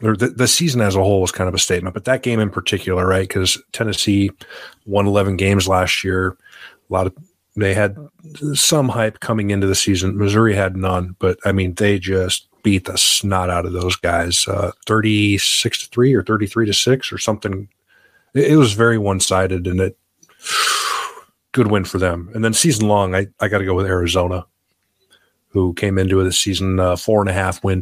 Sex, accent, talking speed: male, American, 205 wpm